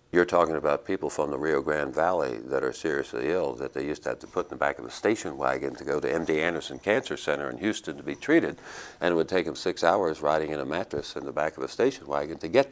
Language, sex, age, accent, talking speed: English, male, 50-69, American, 280 wpm